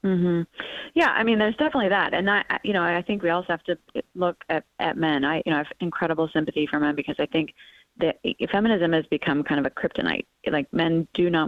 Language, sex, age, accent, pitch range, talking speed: English, female, 20-39, American, 155-185 Hz, 235 wpm